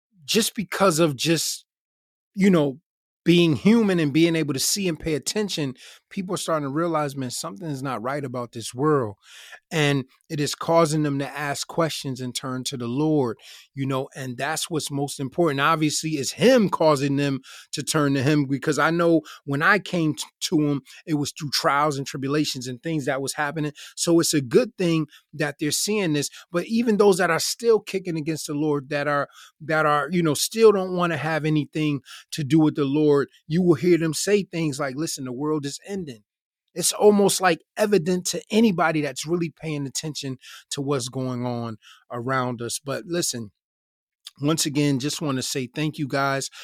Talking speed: 195 wpm